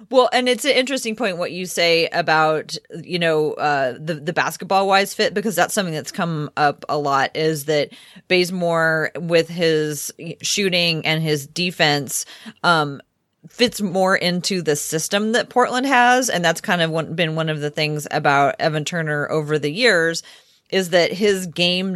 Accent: American